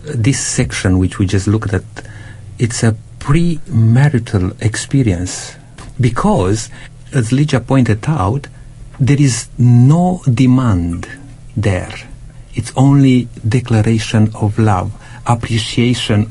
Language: English